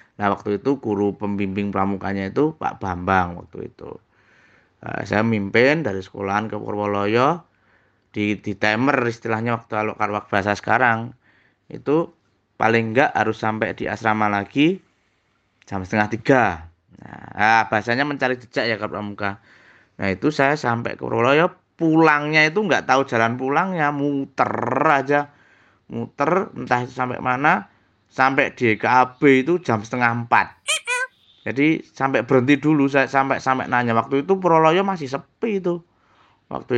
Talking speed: 135 wpm